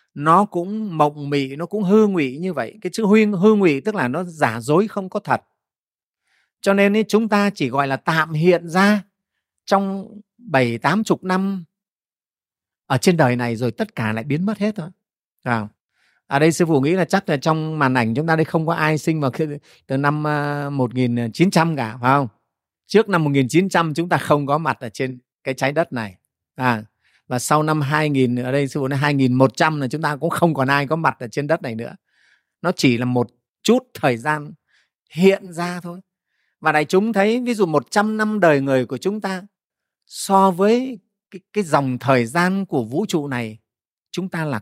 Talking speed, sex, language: 210 wpm, male, Vietnamese